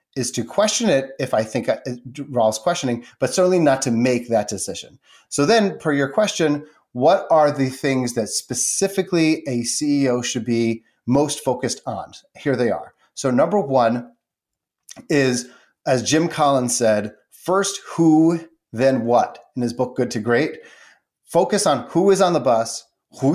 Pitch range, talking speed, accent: 120-165 Hz, 160 wpm, American